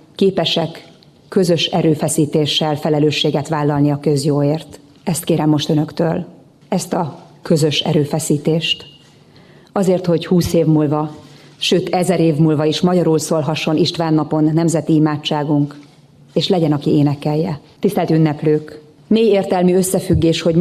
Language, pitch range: Hungarian, 150-180 Hz